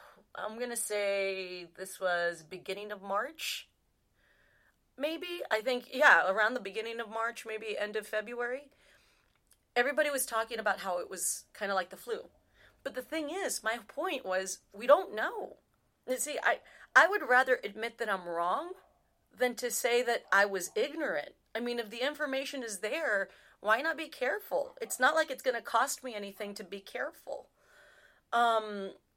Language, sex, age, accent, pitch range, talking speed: English, female, 30-49, American, 195-260 Hz, 175 wpm